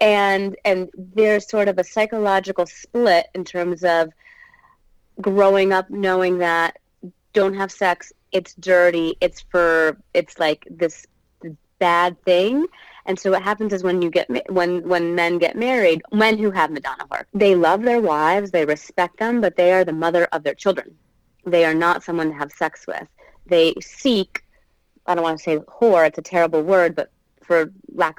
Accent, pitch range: American, 155-190 Hz